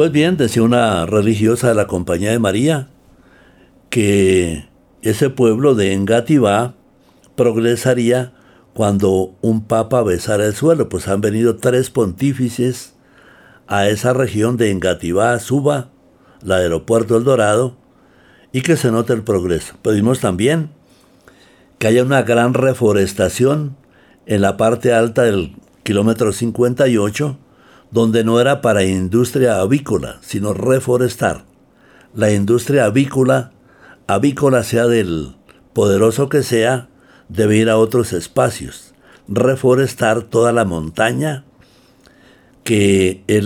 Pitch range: 100-125 Hz